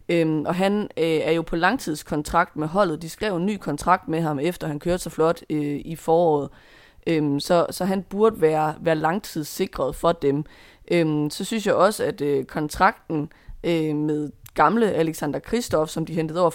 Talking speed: 190 wpm